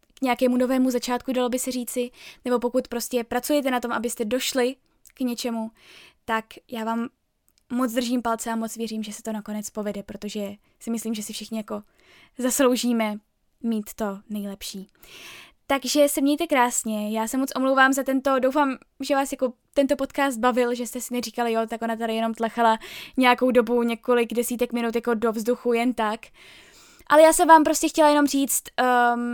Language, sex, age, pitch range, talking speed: Czech, female, 10-29, 230-270 Hz, 180 wpm